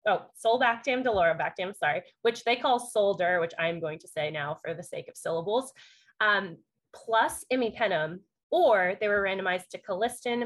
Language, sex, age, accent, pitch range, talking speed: English, female, 20-39, American, 175-225 Hz, 160 wpm